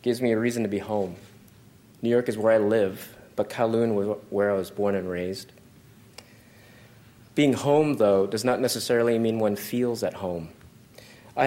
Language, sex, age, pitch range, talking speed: English, male, 30-49, 105-125 Hz, 180 wpm